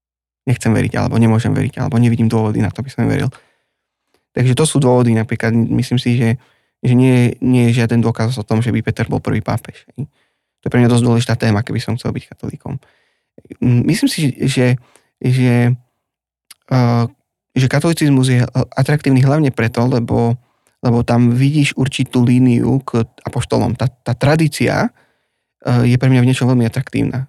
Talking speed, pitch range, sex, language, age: 165 wpm, 120-135 Hz, male, Slovak, 20-39